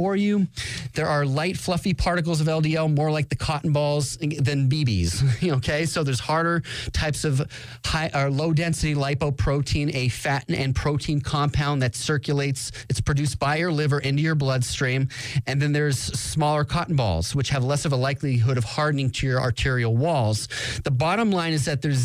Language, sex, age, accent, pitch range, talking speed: English, male, 30-49, American, 130-160 Hz, 170 wpm